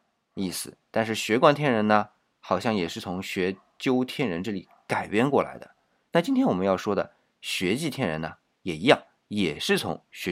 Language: Chinese